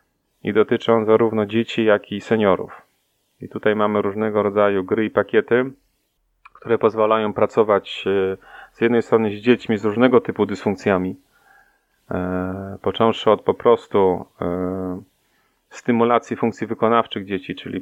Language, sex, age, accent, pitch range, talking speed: Polish, male, 30-49, native, 95-110 Hz, 120 wpm